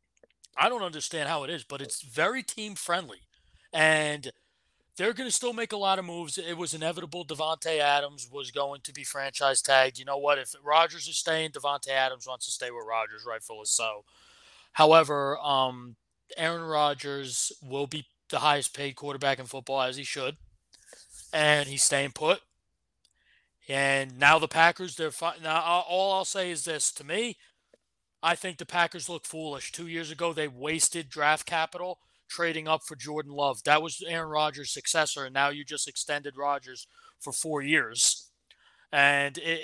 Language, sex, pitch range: English, male, 140-165 Hz